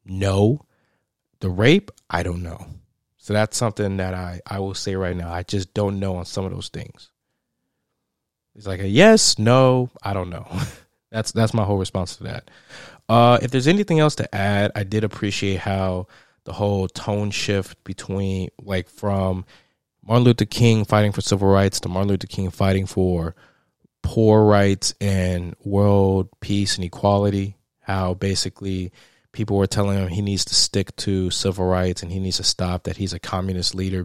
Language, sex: English, male